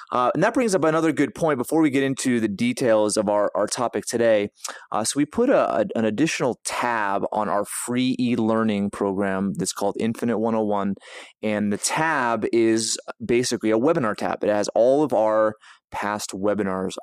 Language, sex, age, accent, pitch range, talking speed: English, male, 20-39, American, 105-125 Hz, 175 wpm